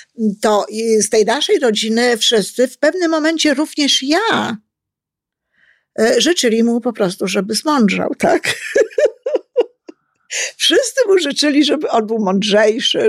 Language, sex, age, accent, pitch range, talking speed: Polish, female, 50-69, native, 215-300 Hz, 115 wpm